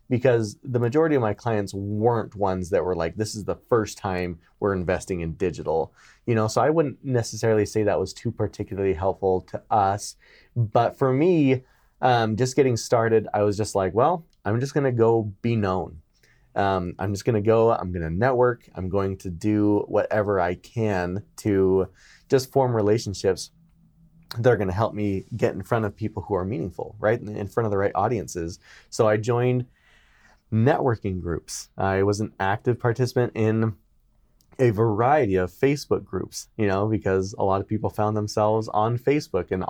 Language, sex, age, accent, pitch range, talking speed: English, male, 30-49, American, 95-120 Hz, 185 wpm